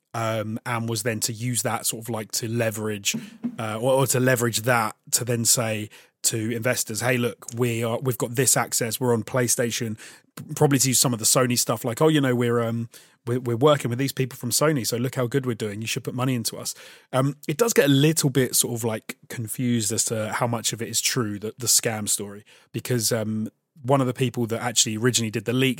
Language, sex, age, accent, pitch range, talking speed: English, male, 30-49, British, 115-130 Hz, 235 wpm